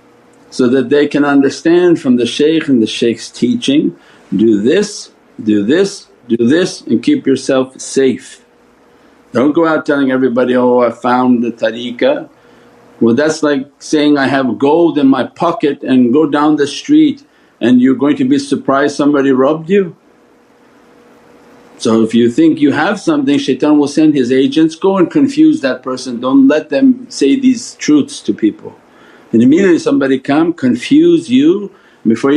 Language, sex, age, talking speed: English, male, 50-69, 165 wpm